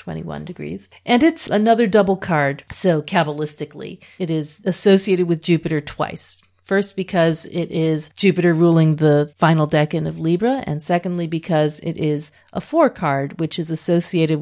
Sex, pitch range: female, 150-190 Hz